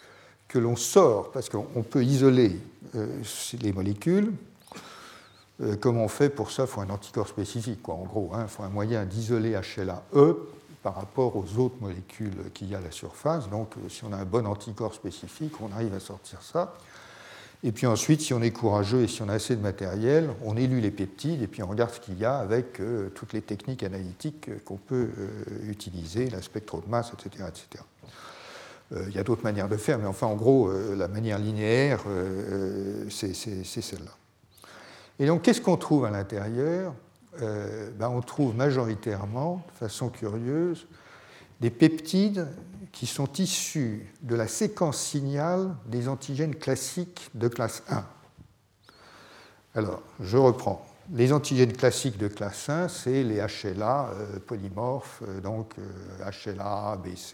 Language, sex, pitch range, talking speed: French, male, 100-130 Hz, 175 wpm